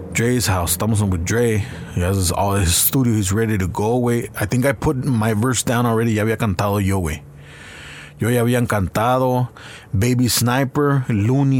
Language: English